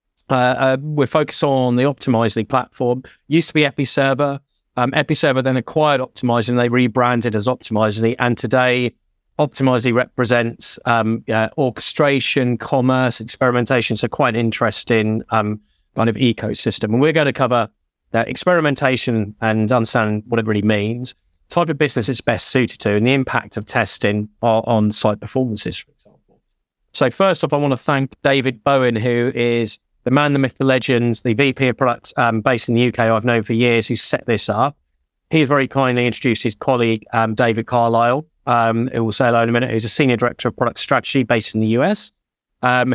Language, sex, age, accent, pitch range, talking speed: English, male, 30-49, British, 115-135 Hz, 180 wpm